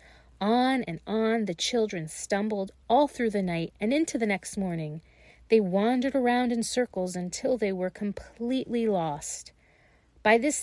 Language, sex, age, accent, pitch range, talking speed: English, female, 40-59, American, 170-235 Hz, 150 wpm